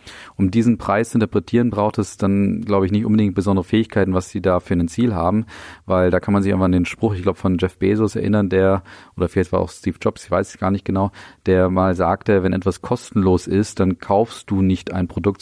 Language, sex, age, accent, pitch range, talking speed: German, male, 40-59, German, 90-105 Hz, 240 wpm